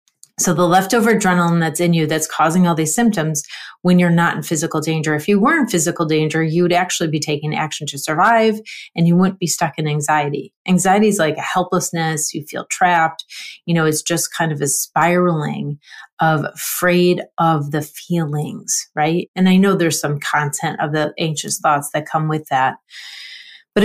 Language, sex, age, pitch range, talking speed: English, female, 30-49, 155-180 Hz, 190 wpm